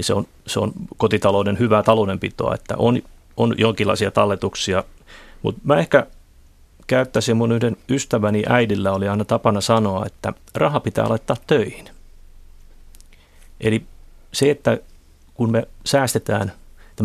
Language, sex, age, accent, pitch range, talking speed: Finnish, male, 30-49, native, 100-120 Hz, 125 wpm